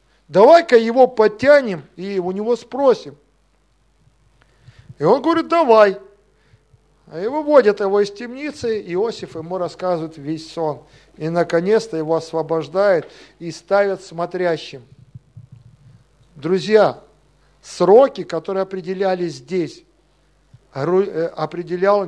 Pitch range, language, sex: 165-205 Hz, Russian, male